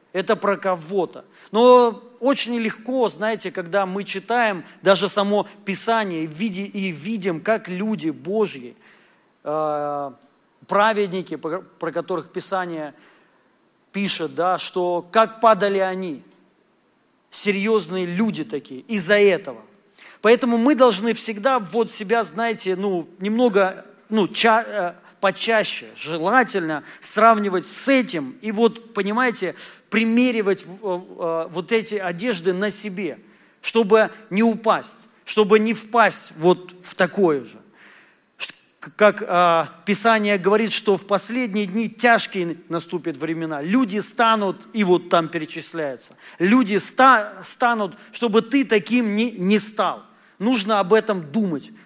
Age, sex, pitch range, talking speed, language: 40-59, male, 180-225 Hz, 110 wpm, Russian